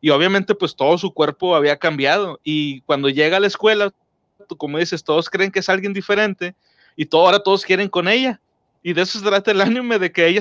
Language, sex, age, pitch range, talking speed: Spanish, male, 30-49, 165-210 Hz, 230 wpm